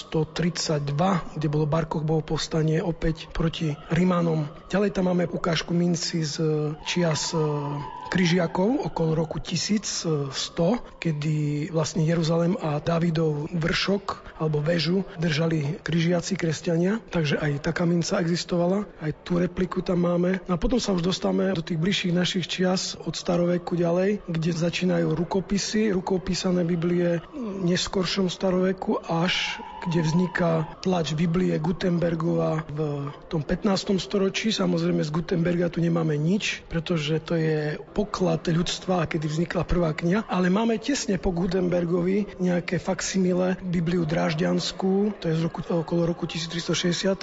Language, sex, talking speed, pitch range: Slovak, male, 130 wpm, 165-185 Hz